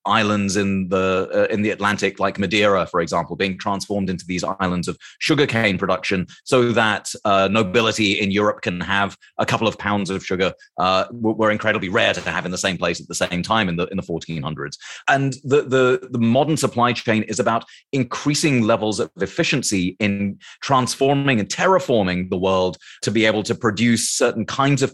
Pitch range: 95-125 Hz